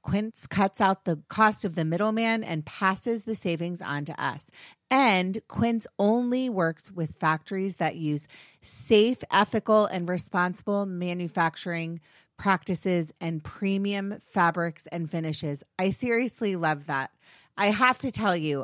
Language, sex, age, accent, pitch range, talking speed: English, female, 30-49, American, 165-205 Hz, 140 wpm